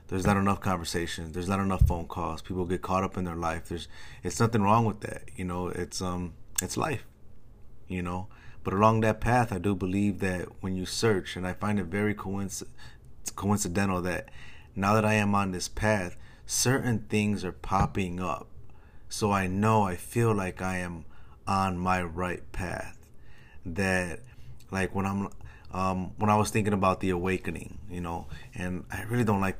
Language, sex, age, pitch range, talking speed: English, male, 30-49, 90-105 Hz, 185 wpm